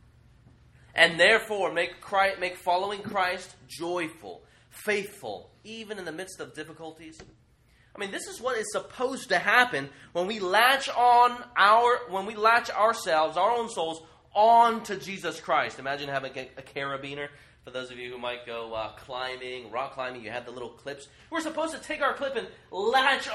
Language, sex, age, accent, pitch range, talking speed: English, male, 20-39, American, 155-235 Hz, 170 wpm